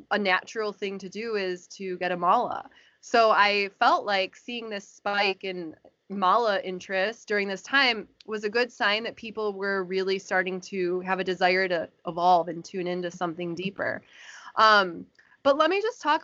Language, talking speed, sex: English, 180 wpm, female